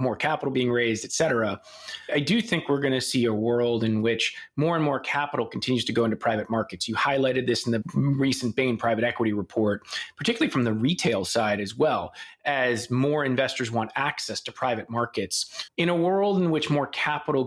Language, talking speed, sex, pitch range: English, 205 wpm, male, 115-140 Hz